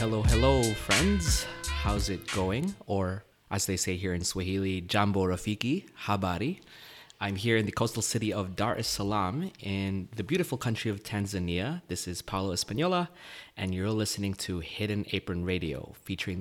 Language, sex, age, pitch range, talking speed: English, male, 20-39, 95-115 Hz, 160 wpm